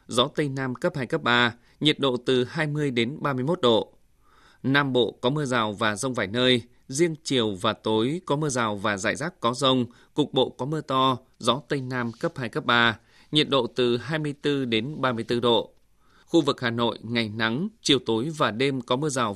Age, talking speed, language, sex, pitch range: 20-39, 215 wpm, Vietnamese, male, 115-140 Hz